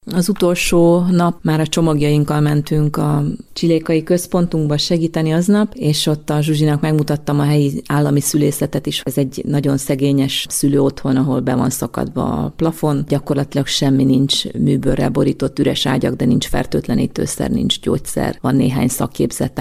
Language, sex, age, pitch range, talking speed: Hungarian, female, 30-49, 135-160 Hz, 150 wpm